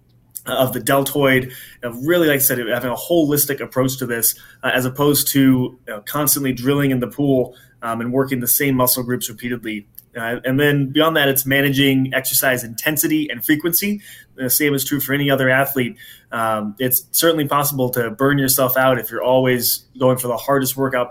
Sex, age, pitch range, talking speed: male, 20-39, 120-140 Hz, 190 wpm